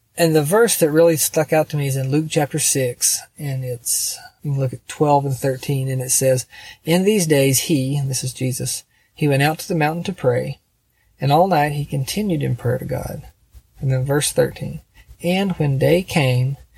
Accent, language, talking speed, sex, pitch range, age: American, English, 205 wpm, male, 125-150 Hz, 40-59